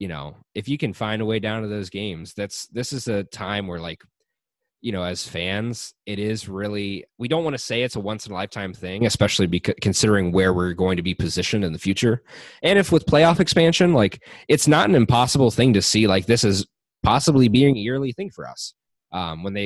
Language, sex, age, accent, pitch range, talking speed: English, male, 20-39, American, 90-120 Hz, 225 wpm